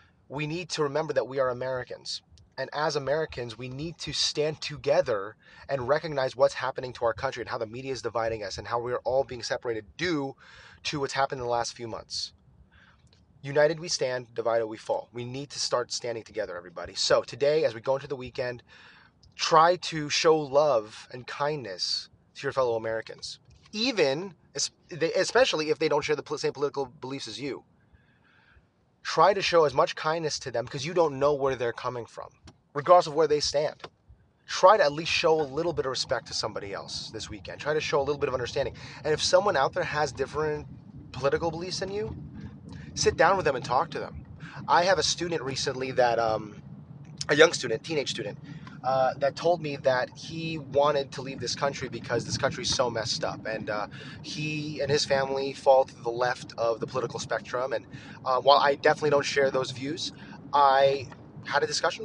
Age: 30-49